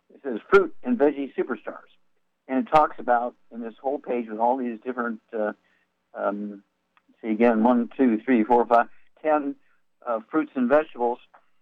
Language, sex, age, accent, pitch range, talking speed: English, male, 60-79, American, 110-140 Hz, 170 wpm